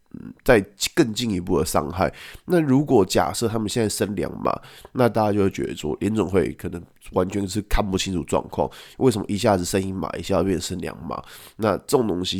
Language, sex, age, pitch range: Chinese, male, 20-39, 95-115 Hz